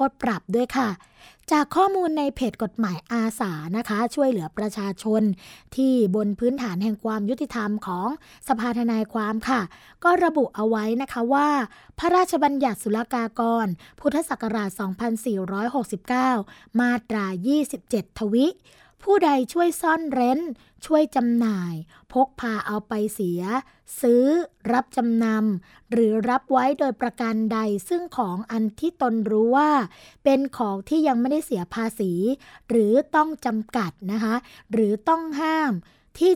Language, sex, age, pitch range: Thai, female, 20-39, 210-270 Hz